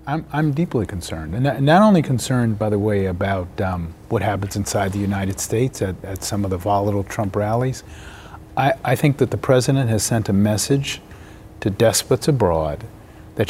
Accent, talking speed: American, 180 wpm